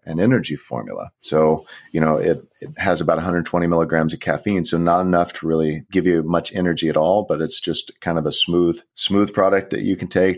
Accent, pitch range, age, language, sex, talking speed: American, 80-90 Hz, 30-49, English, male, 220 wpm